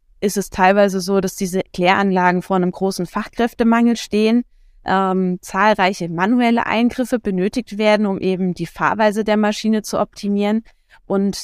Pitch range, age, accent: 185-215 Hz, 20-39, German